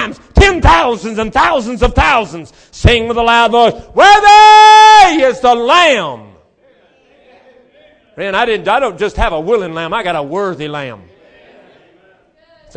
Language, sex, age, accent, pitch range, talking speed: English, male, 50-69, American, 170-250 Hz, 145 wpm